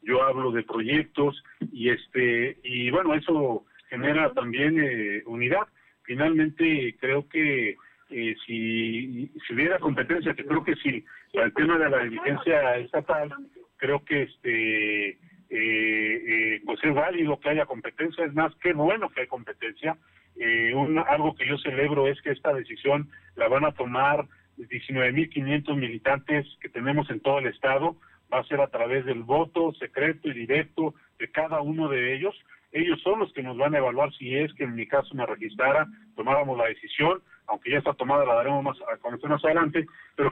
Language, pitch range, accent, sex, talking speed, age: Spanish, 130-165 Hz, Mexican, male, 175 wpm, 40-59